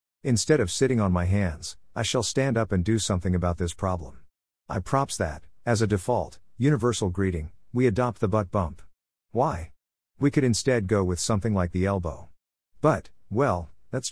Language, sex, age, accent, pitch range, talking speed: English, male, 50-69, American, 85-120 Hz, 180 wpm